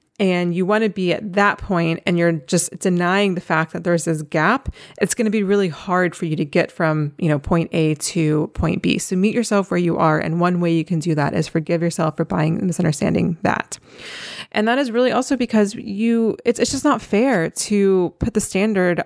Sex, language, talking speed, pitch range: female, English, 230 wpm, 170-205 Hz